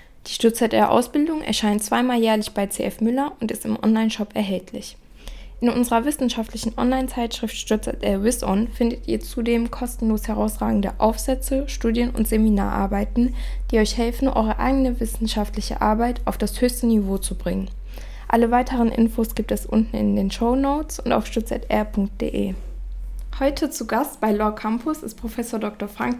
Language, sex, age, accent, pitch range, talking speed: German, female, 10-29, German, 210-245 Hz, 145 wpm